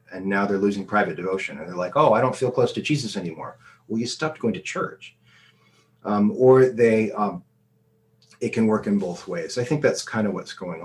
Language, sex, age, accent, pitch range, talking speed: English, male, 30-49, American, 105-145 Hz, 220 wpm